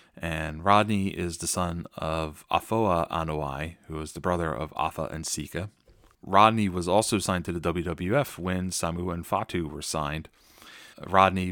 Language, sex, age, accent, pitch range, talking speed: English, male, 30-49, American, 80-100 Hz, 155 wpm